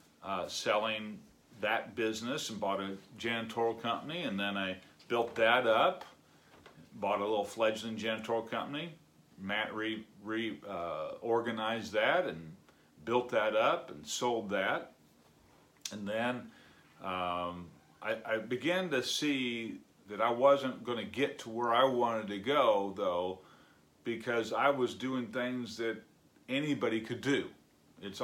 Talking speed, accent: 135 wpm, American